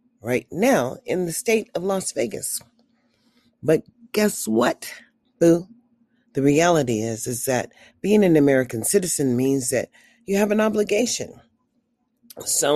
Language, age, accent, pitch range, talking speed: English, 40-59, American, 160-240 Hz, 130 wpm